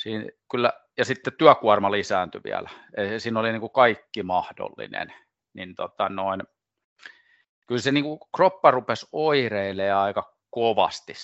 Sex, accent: male, native